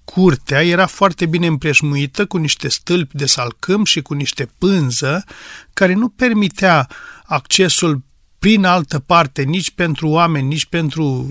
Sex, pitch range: male, 145-195 Hz